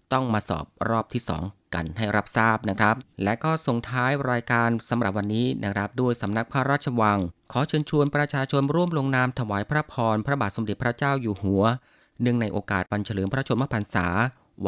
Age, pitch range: 20-39, 100-135 Hz